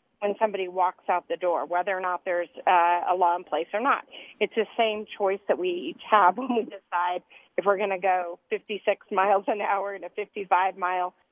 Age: 40-59